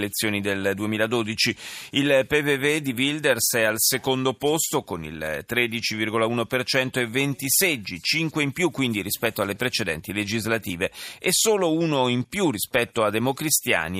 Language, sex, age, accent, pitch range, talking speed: Italian, male, 30-49, native, 105-140 Hz, 140 wpm